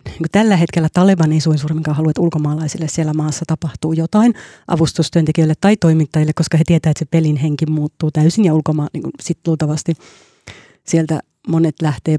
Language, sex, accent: Finnish, female, native